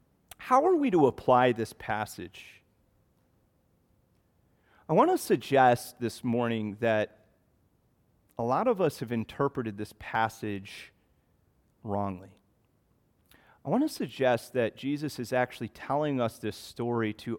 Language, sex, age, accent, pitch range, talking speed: English, male, 30-49, American, 110-150 Hz, 125 wpm